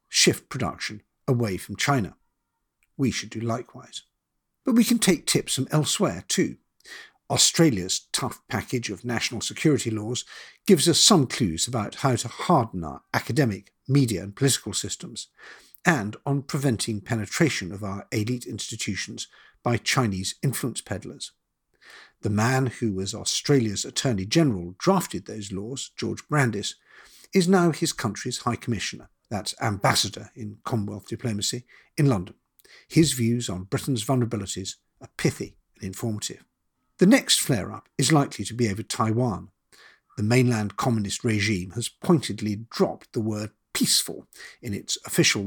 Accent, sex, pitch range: British, male, 105-135 Hz